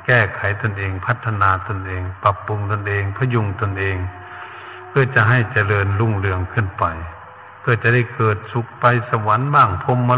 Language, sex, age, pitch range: Thai, male, 70-89, 95-115 Hz